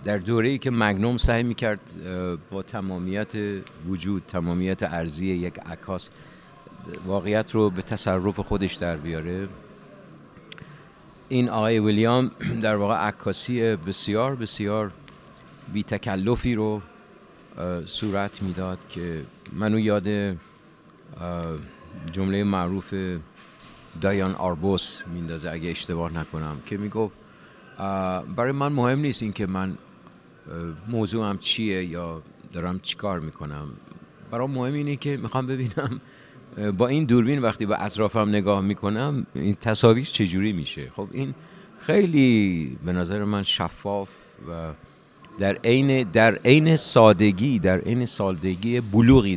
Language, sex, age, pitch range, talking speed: Persian, male, 50-69, 95-120 Hz, 115 wpm